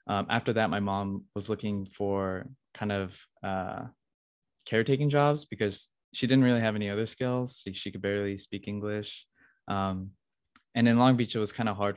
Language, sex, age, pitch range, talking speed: English, male, 20-39, 100-120 Hz, 180 wpm